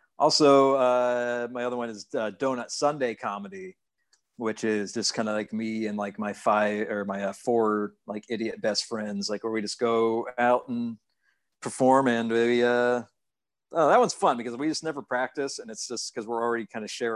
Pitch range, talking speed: 115-155 Hz, 205 wpm